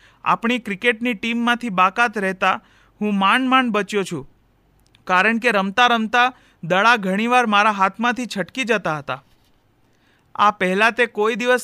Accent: native